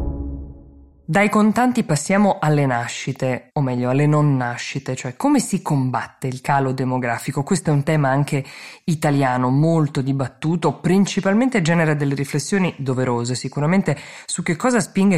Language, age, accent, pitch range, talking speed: Italian, 20-39, native, 135-175 Hz, 140 wpm